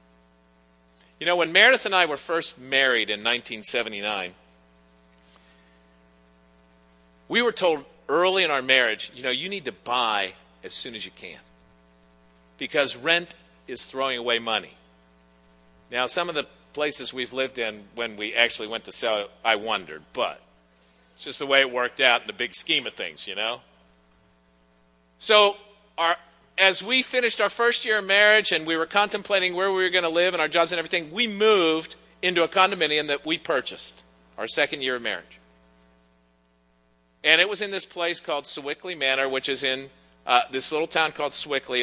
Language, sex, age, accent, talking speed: English, male, 50-69, American, 175 wpm